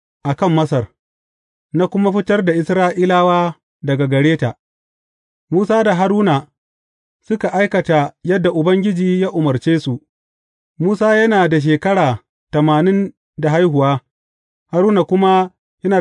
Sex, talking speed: male, 105 wpm